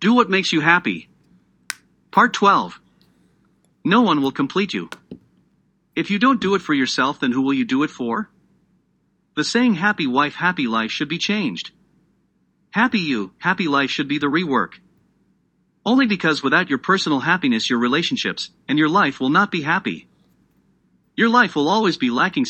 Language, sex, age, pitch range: English, male, 40-59, 145-225 Hz